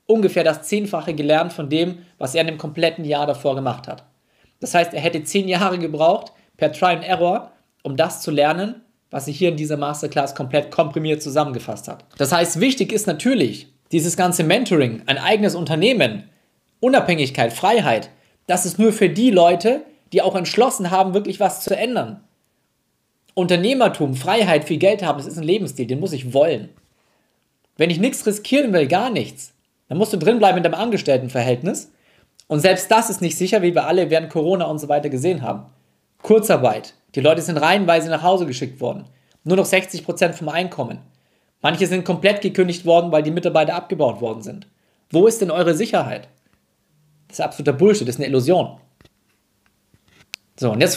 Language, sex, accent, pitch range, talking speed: German, male, German, 150-190 Hz, 180 wpm